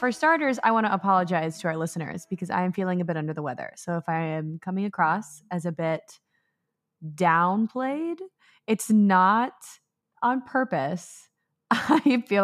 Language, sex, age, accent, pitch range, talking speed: English, female, 20-39, American, 170-210 Hz, 165 wpm